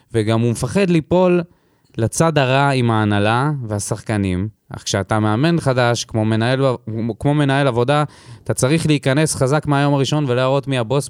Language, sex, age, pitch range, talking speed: Hebrew, male, 20-39, 115-140 Hz, 145 wpm